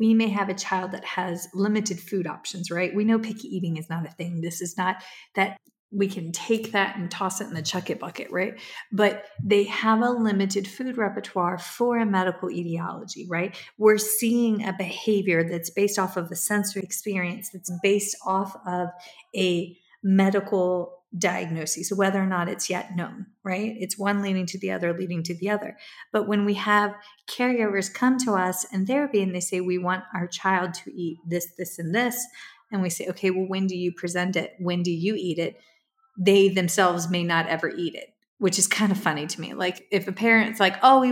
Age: 40-59